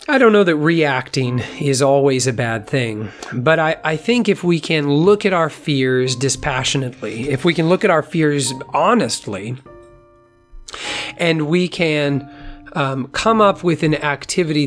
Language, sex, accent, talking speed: English, male, American, 160 wpm